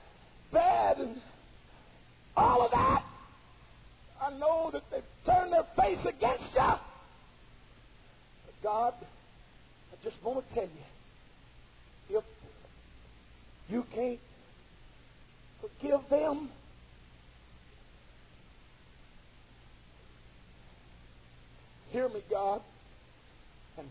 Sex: male